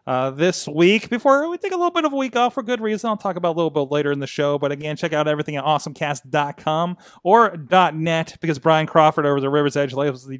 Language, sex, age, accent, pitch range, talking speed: English, male, 30-49, American, 140-185 Hz, 250 wpm